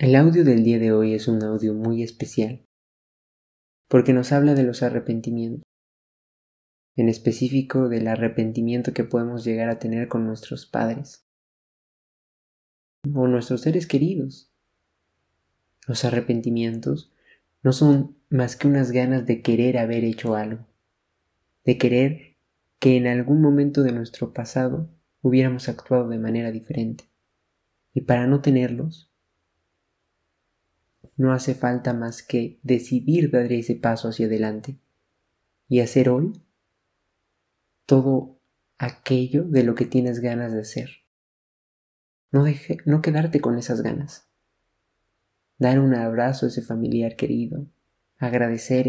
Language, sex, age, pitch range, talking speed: Spanish, male, 20-39, 115-135 Hz, 125 wpm